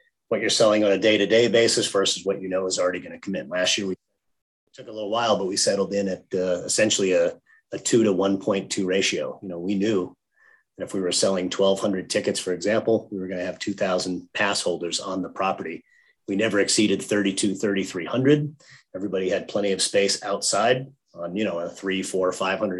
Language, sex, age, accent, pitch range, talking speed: English, male, 30-49, American, 95-115 Hz, 210 wpm